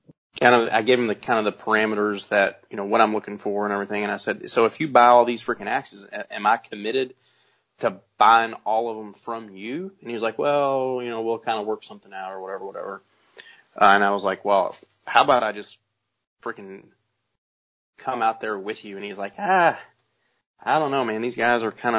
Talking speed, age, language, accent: 230 wpm, 30-49, English, American